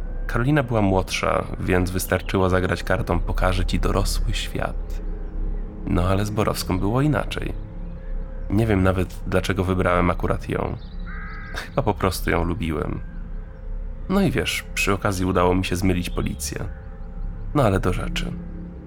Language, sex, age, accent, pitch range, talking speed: Polish, male, 20-39, native, 85-105 Hz, 135 wpm